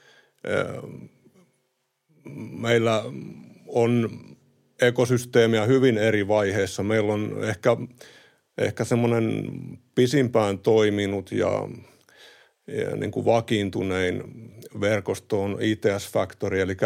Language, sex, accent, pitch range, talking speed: Finnish, male, native, 100-120 Hz, 75 wpm